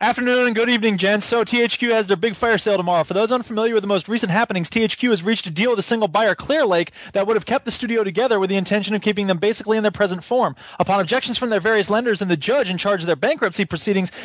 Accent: American